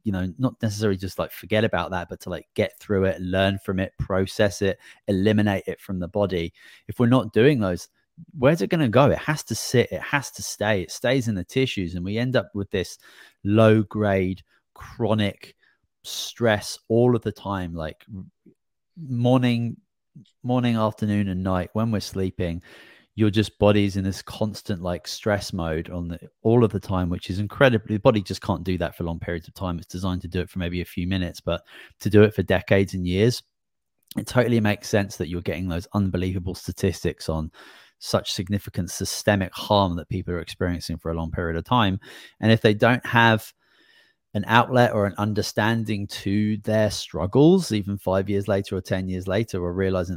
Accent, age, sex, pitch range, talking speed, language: British, 30-49, male, 90-110 Hz, 195 wpm, English